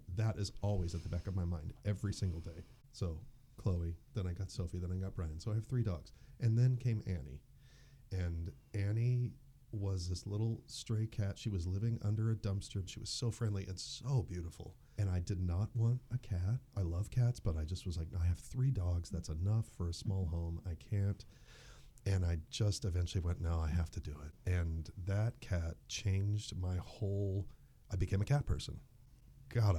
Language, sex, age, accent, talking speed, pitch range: English, male, 40-59, American, 205 wpm, 90-115 Hz